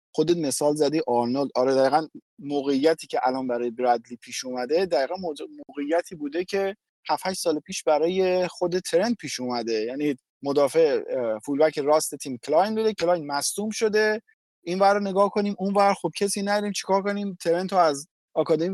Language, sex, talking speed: Persian, male, 160 wpm